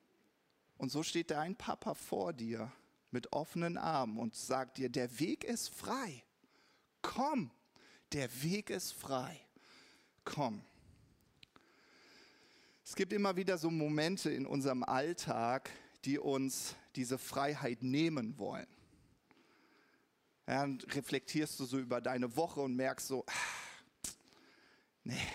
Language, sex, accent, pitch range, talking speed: German, male, German, 130-170 Hz, 120 wpm